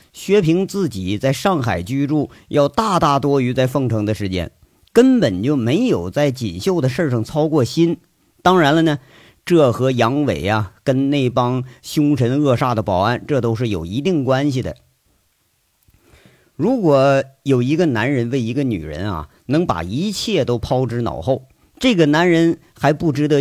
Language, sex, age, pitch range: Chinese, male, 50-69, 115-155 Hz